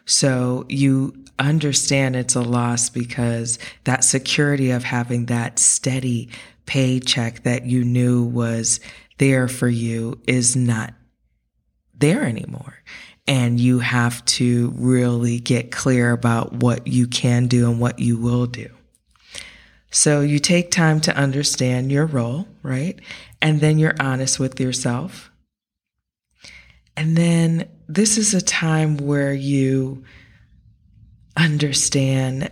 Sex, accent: female, American